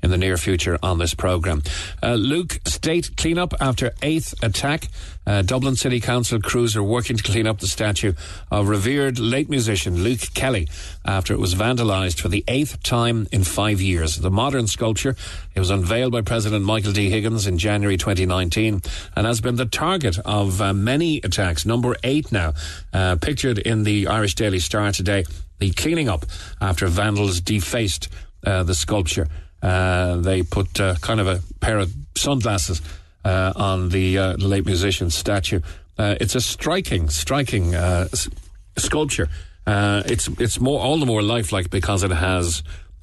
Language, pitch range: English, 90-115 Hz